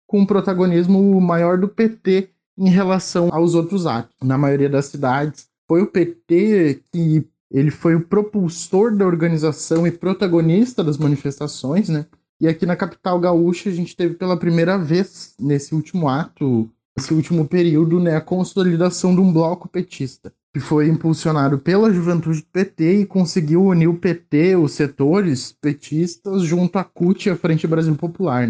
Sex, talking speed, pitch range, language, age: male, 160 wpm, 145-185 Hz, Portuguese, 20-39